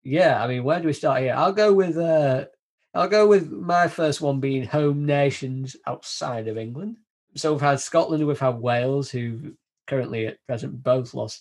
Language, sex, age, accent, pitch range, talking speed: English, male, 20-39, British, 115-145 Hz, 195 wpm